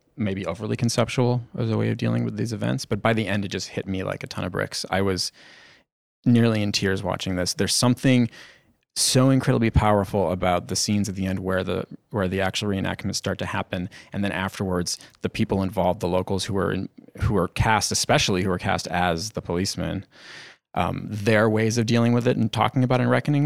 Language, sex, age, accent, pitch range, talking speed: English, male, 30-49, American, 95-120 Hz, 215 wpm